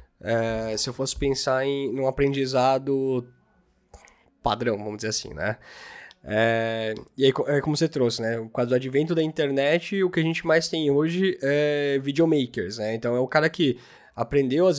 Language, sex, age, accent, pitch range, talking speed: Portuguese, male, 20-39, Brazilian, 115-150 Hz, 185 wpm